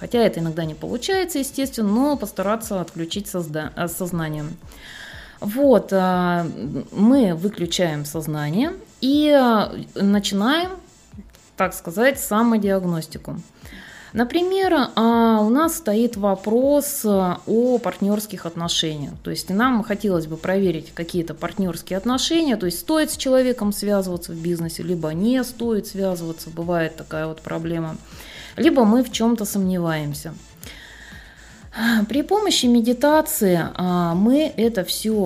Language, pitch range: Russian, 175-245 Hz